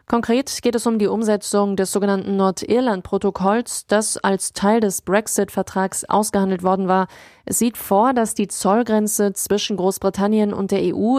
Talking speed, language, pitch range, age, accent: 150 wpm, German, 190-215 Hz, 20-39, German